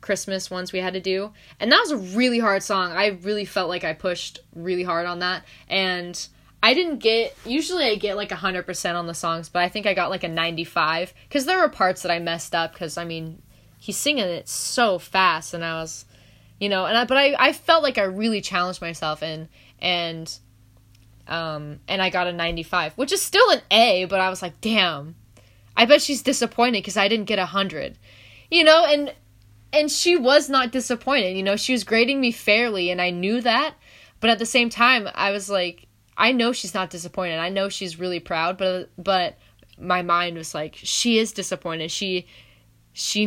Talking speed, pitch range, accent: 215 wpm, 165-225 Hz, American